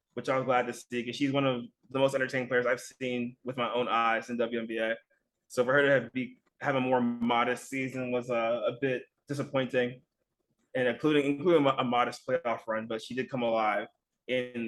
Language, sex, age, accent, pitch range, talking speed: English, male, 20-39, American, 120-140 Hz, 210 wpm